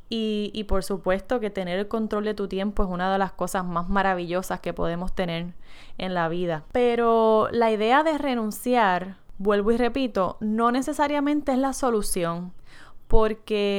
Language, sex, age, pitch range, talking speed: Spanish, female, 10-29, 190-235 Hz, 165 wpm